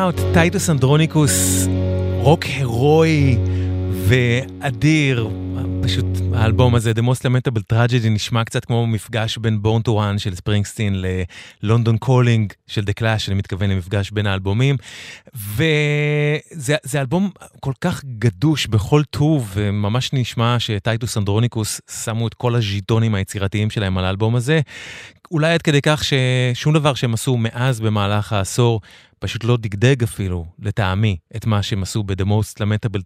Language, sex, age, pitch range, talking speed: English, male, 30-49, 105-130 Hz, 105 wpm